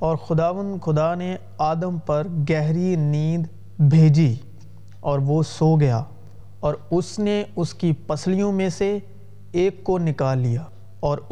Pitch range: 130-175 Hz